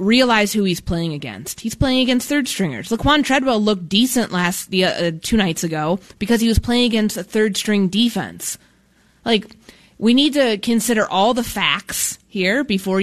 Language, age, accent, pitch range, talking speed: English, 20-39, American, 170-215 Hz, 175 wpm